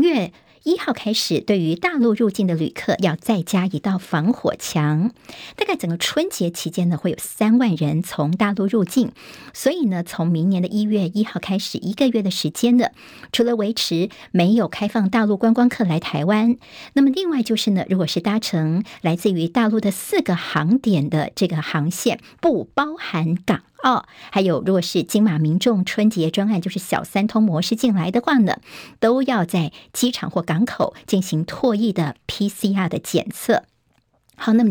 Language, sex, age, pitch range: Chinese, male, 50-69, 175-230 Hz